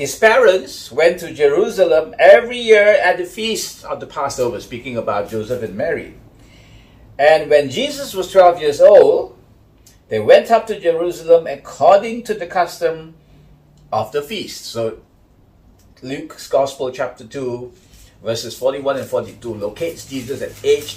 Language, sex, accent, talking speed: English, male, Malaysian, 145 wpm